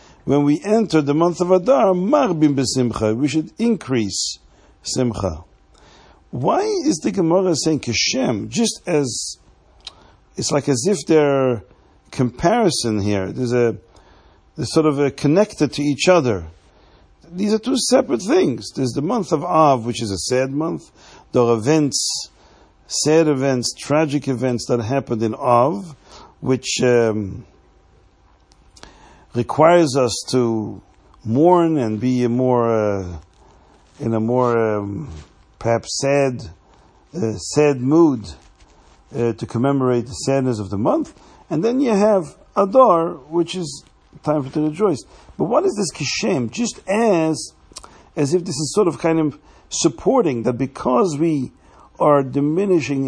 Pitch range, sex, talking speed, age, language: 115-165 Hz, male, 140 wpm, 50-69, English